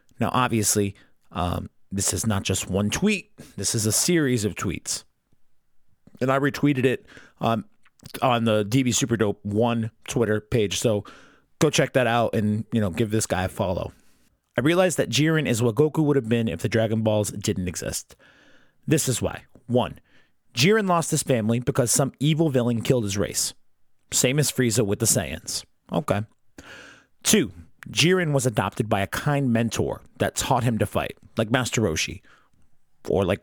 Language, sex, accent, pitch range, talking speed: English, male, American, 110-140 Hz, 175 wpm